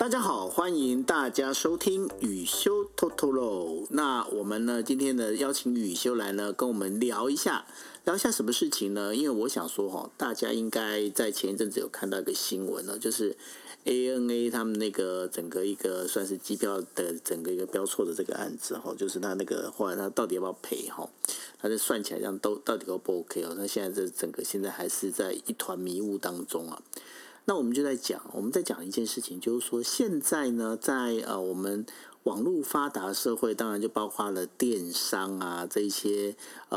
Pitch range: 100-135 Hz